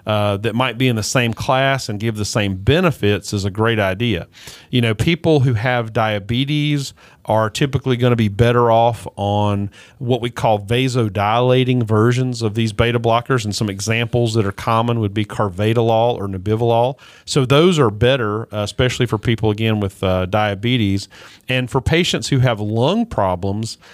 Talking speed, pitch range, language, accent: 175 wpm, 105-125 Hz, English, American